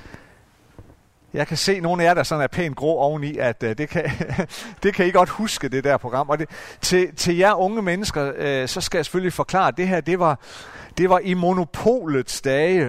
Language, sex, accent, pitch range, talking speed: Danish, male, native, 120-170 Hz, 220 wpm